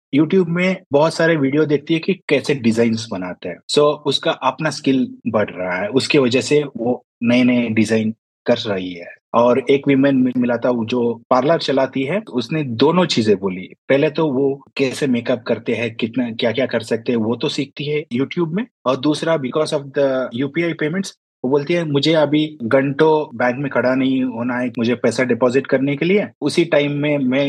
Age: 30-49